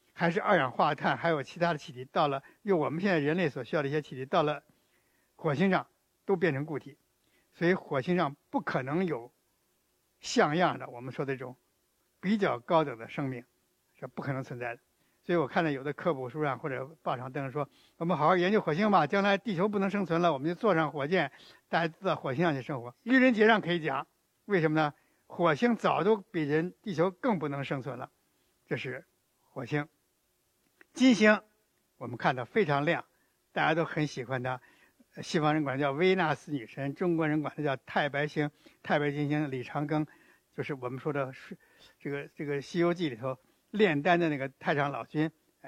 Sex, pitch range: male, 140-180 Hz